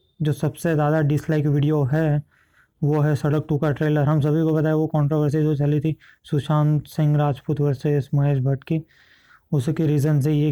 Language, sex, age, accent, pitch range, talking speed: Hindi, male, 20-39, native, 145-160 Hz, 195 wpm